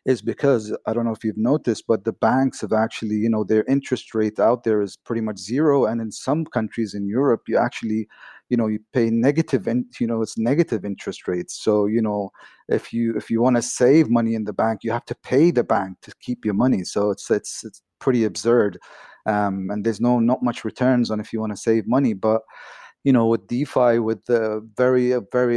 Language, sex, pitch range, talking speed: English, male, 110-120 Hz, 230 wpm